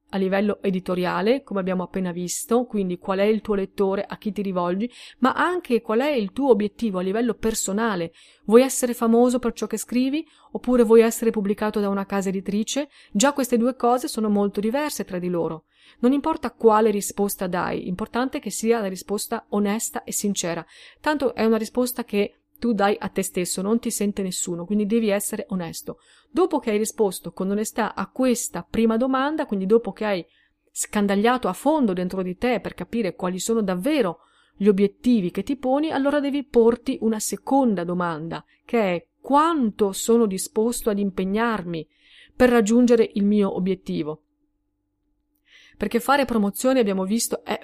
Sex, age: female, 30-49